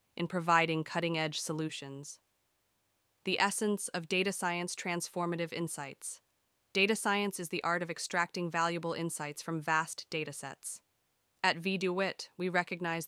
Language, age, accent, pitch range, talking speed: English, 20-39, American, 160-185 Hz, 135 wpm